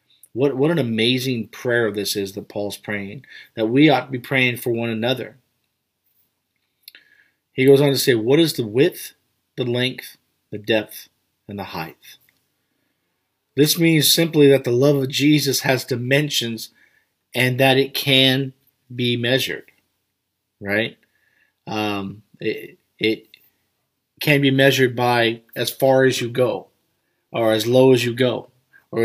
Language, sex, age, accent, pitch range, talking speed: English, male, 40-59, American, 105-130 Hz, 145 wpm